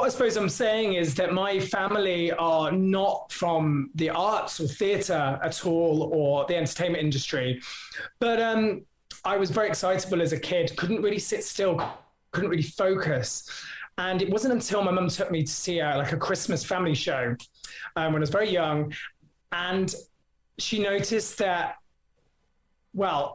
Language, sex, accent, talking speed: English, male, British, 160 wpm